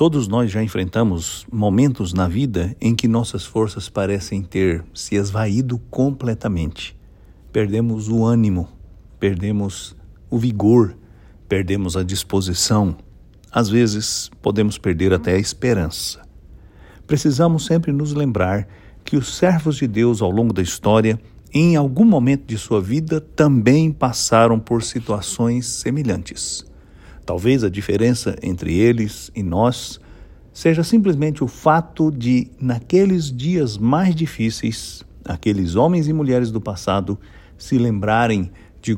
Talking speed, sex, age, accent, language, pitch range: 125 wpm, male, 60-79, Brazilian, English, 100-125 Hz